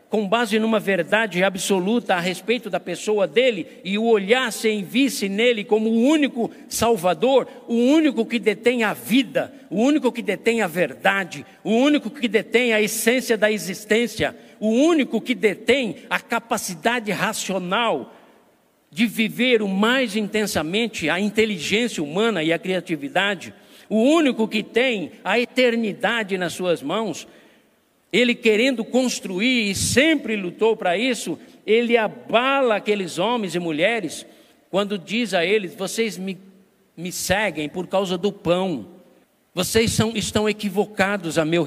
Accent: Brazilian